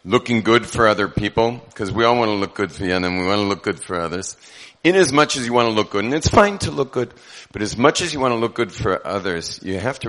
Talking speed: 305 wpm